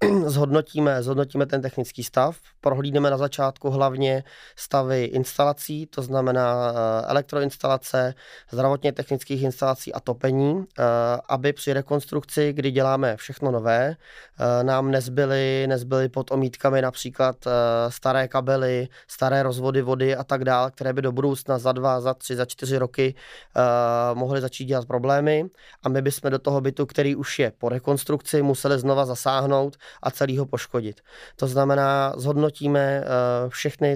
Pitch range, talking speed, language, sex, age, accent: 125-140 Hz, 135 wpm, Czech, male, 20-39, native